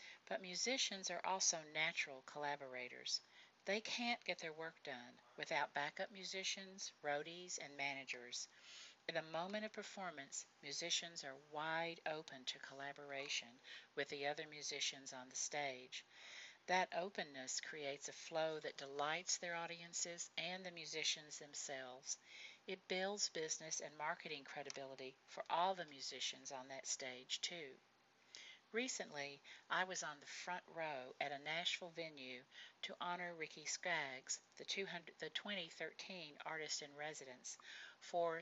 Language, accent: English, American